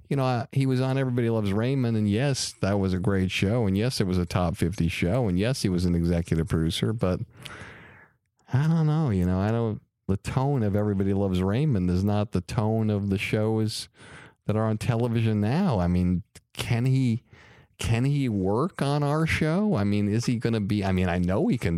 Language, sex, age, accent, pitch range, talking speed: English, male, 50-69, American, 95-130 Hz, 220 wpm